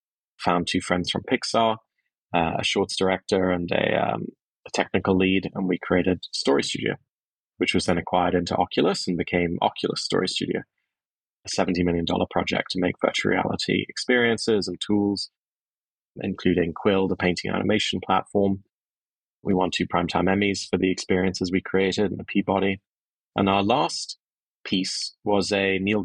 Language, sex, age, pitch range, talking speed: English, male, 20-39, 90-105 Hz, 155 wpm